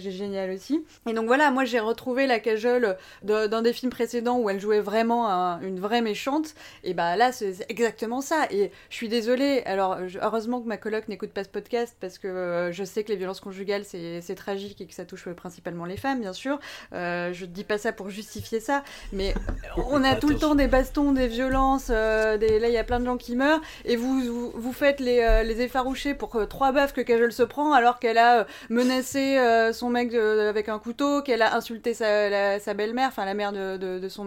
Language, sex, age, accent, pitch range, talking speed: French, female, 20-39, French, 200-255 Hz, 230 wpm